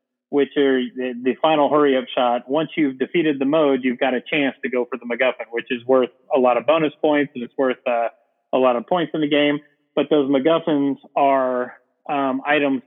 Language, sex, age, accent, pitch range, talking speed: English, male, 30-49, American, 125-145 Hz, 215 wpm